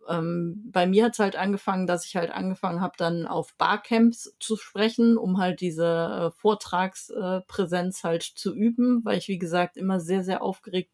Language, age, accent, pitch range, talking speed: German, 30-49, German, 180-205 Hz, 185 wpm